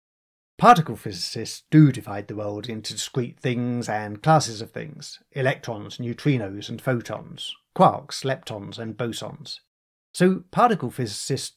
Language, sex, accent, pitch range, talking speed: English, male, British, 115-160 Hz, 125 wpm